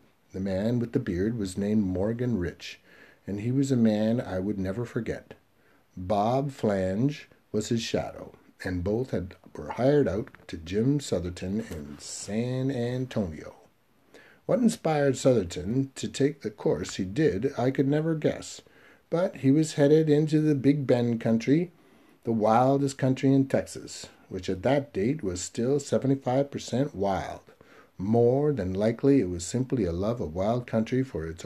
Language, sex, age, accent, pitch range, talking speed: English, male, 50-69, American, 95-135 Hz, 155 wpm